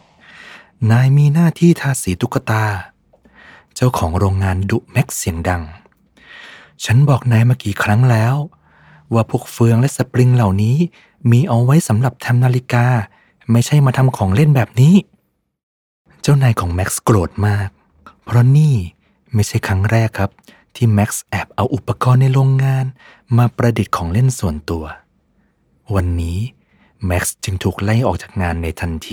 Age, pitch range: 20-39, 95-130 Hz